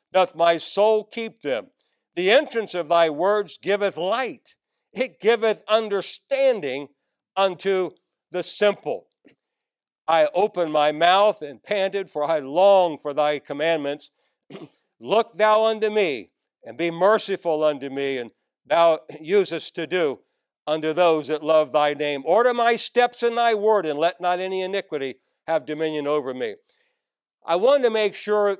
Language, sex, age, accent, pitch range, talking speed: English, male, 60-79, American, 160-215 Hz, 145 wpm